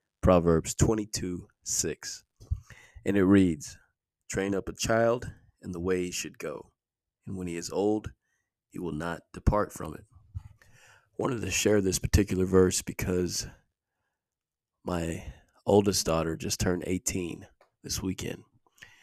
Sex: male